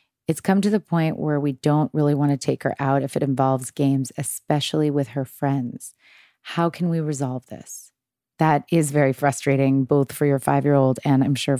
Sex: female